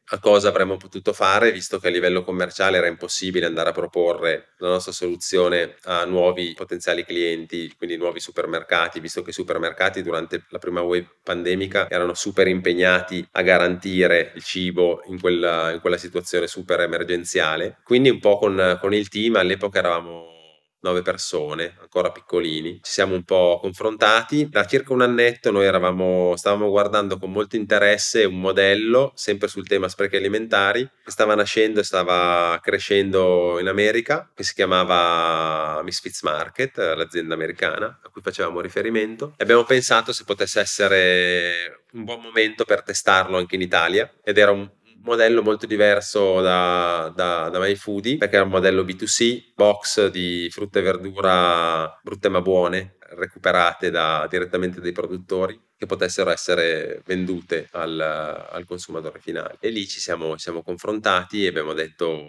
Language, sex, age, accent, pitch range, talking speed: Italian, male, 20-39, native, 90-105 Hz, 155 wpm